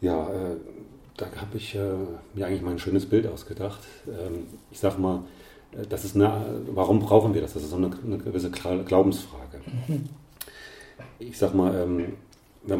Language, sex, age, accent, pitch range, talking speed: German, male, 40-59, German, 95-110 Hz, 140 wpm